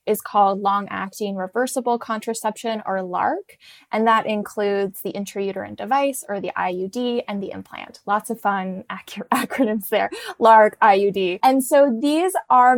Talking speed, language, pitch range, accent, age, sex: 140 wpm, English, 195-230 Hz, American, 20-39, female